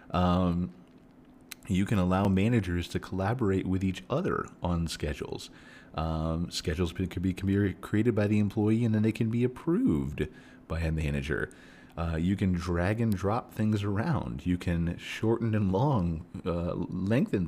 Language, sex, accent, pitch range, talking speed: English, male, American, 80-105 Hz, 160 wpm